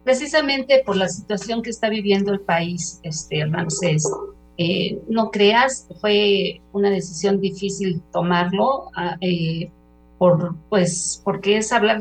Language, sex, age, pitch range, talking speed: Spanish, female, 50-69, 175-205 Hz, 125 wpm